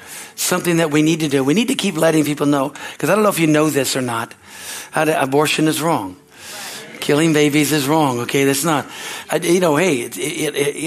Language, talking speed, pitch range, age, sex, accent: English, 230 wpm, 140-160 Hz, 60-79, male, American